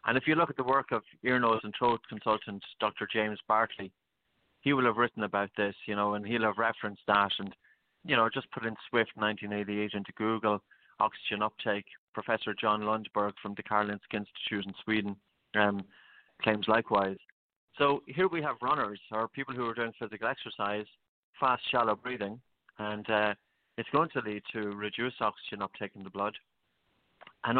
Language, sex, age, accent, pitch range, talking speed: English, male, 30-49, Irish, 105-115 Hz, 180 wpm